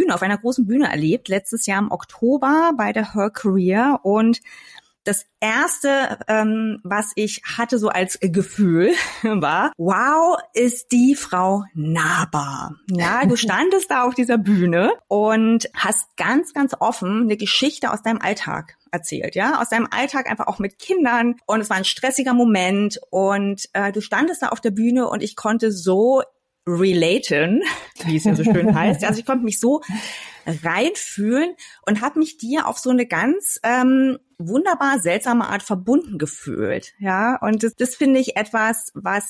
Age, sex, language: 30-49, female, German